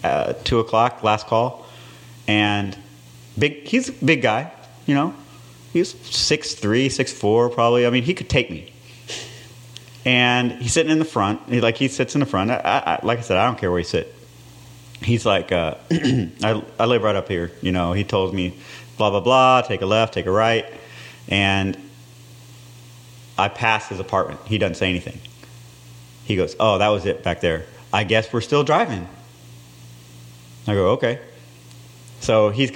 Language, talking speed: English, 180 wpm